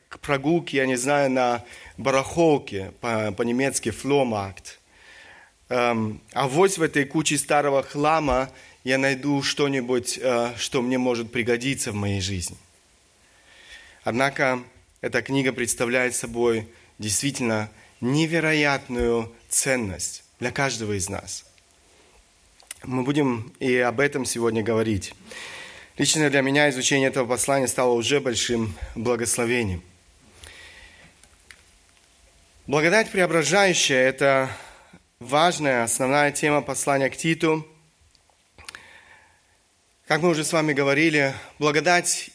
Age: 30-49